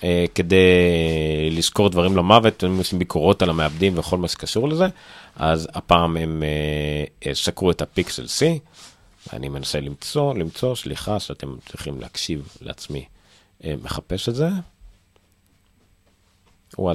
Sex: male